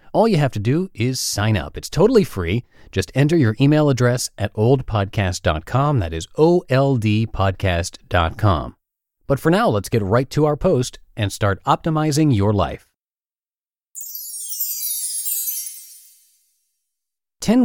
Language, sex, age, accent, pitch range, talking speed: English, male, 30-49, American, 100-150 Hz, 120 wpm